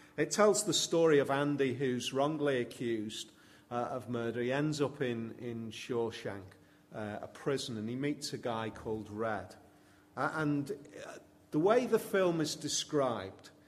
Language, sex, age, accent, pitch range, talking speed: English, male, 40-59, British, 110-155 Hz, 160 wpm